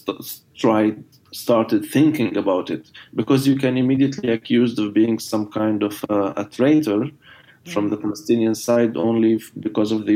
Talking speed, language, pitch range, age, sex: 165 wpm, Dutch, 105-120 Hz, 20-39, male